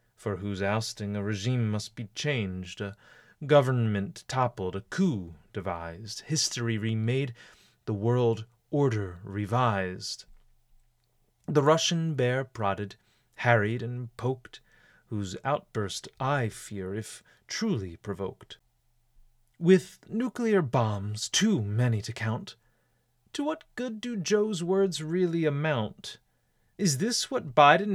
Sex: male